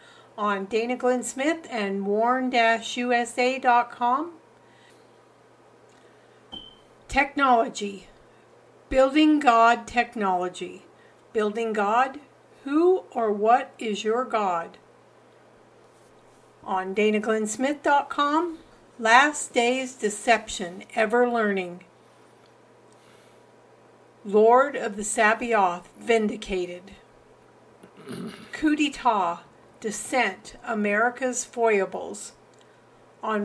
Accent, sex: American, female